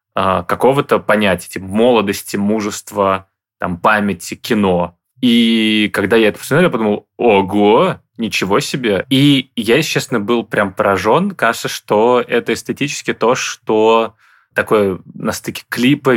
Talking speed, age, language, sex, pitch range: 120 wpm, 20-39, Russian, male, 100-115 Hz